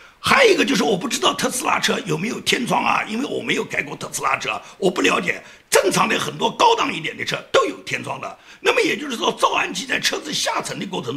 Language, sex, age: Chinese, male, 50-69